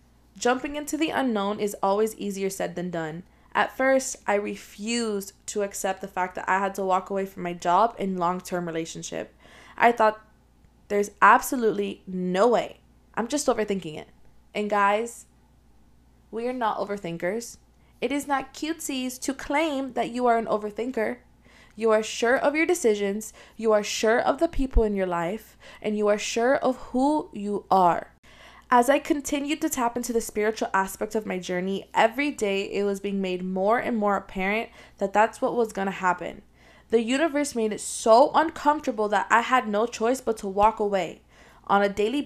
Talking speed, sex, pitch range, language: 180 wpm, female, 195-235 Hz, English